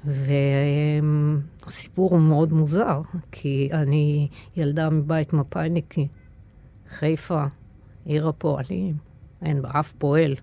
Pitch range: 145-170 Hz